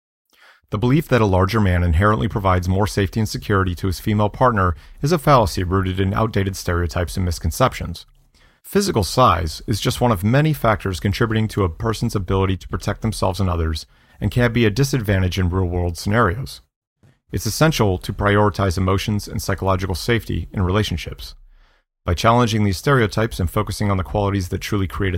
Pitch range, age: 90-115 Hz, 40-59